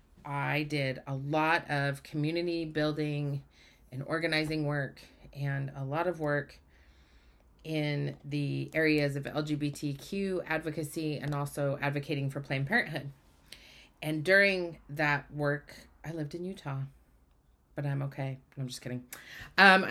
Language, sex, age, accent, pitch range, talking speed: English, female, 30-49, American, 140-165 Hz, 125 wpm